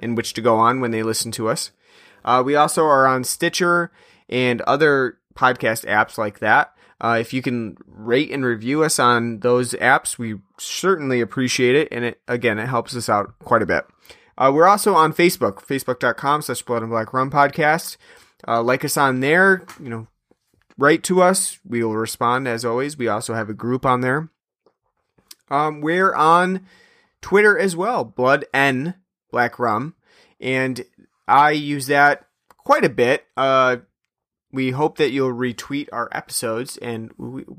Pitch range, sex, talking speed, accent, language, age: 120-150 Hz, male, 170 wpm, American, English, 30-49